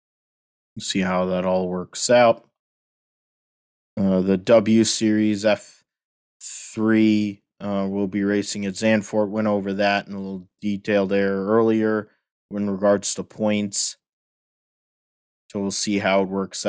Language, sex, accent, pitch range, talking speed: English, male, American, 95-105 Hz, 135 wpm